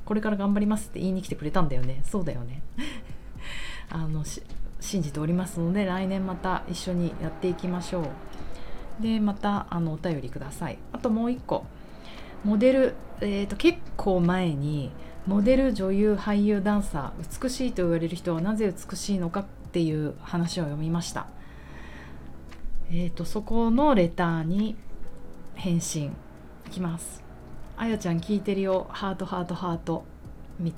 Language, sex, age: Japanese, female, 30-49